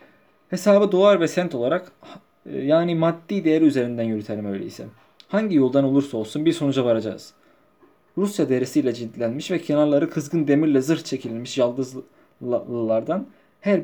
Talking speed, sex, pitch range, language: 125 wpm, male, 125-165 Hz, Turkish